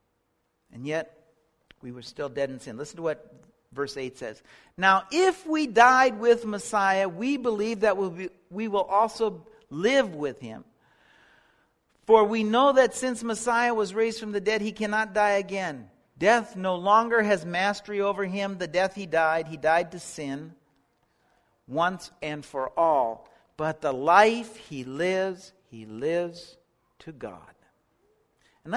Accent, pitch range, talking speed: American, 160-255 Hz, 150 wpm